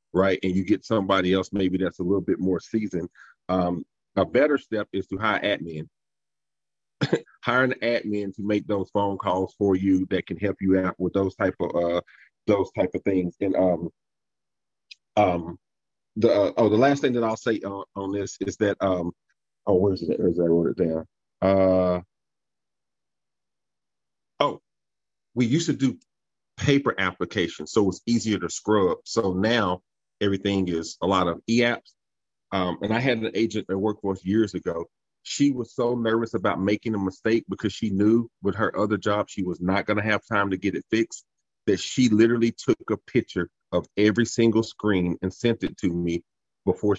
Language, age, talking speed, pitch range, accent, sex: English, 40-59, 190 wpm, 95-110 Hz, American, male